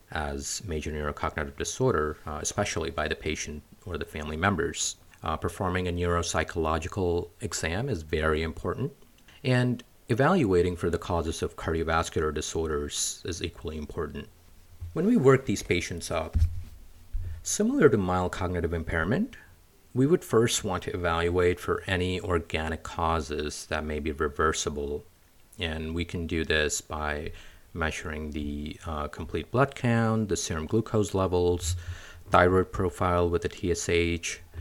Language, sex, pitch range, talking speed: English, male, 80-95 Hz, 135 wpm